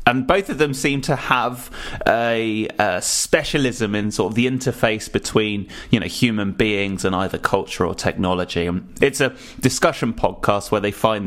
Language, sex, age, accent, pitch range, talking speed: English, male, 20-39, British, 105-140 Hz, 170 wpm